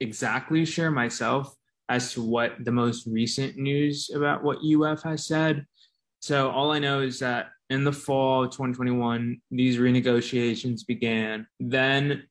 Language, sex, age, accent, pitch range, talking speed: English, male, 20-39, American, 120-135 Hz, 145 wpm